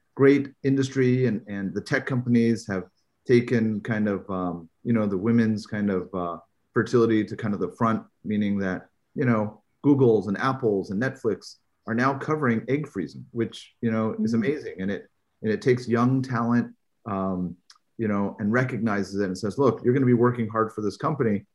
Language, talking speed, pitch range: English, 190 wpm, 100-120 Hz